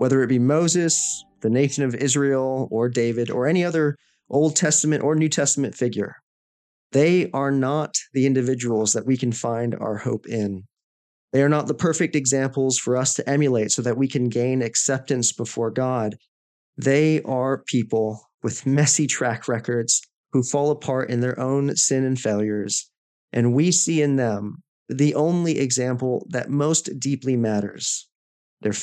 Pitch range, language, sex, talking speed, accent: 115-140 Hz, English, male, 160 wpm, American